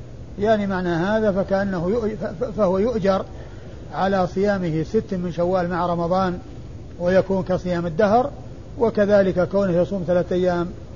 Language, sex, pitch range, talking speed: Arabic, male, 170-190 Hz, 115 wpm